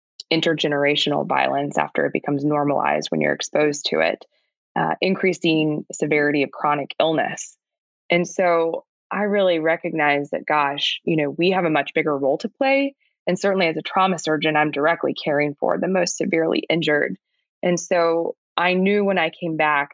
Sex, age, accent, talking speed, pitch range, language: female, 20-39, American, 170 wpm, 155-190 Hz, English